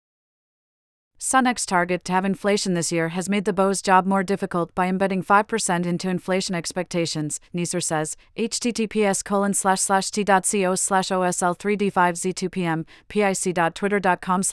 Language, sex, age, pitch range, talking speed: English, female, 40-59, 175-205 Hz, 135 wpm